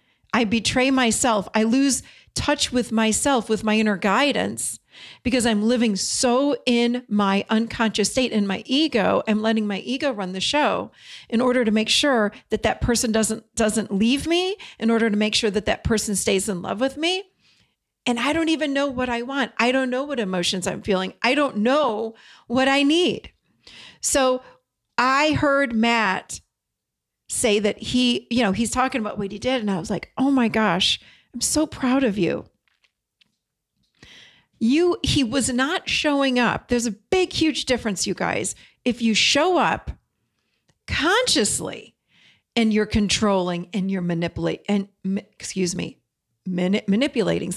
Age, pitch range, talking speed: 40-59, 210-265 Hz, 165 wpm